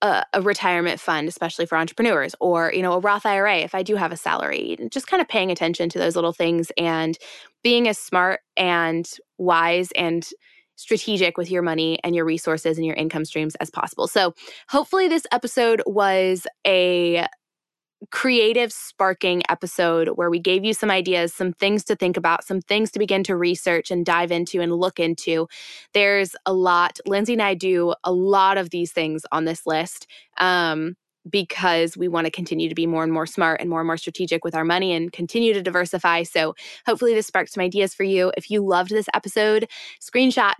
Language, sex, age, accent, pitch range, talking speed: English, female, 20-39, American, 170-205 Hz, 195 wpm